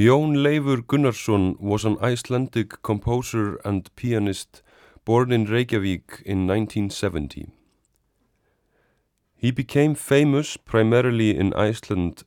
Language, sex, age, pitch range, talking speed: English, male, 30-49, 95-120 Hz, 100 wpm